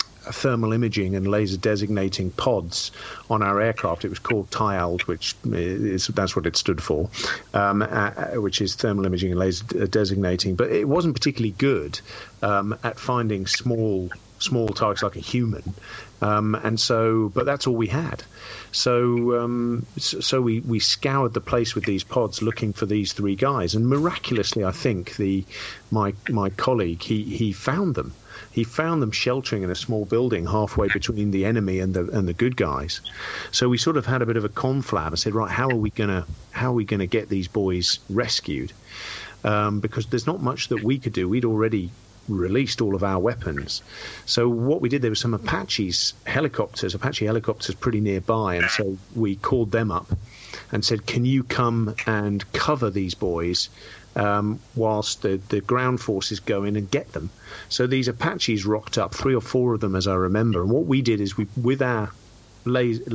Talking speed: 190 wpm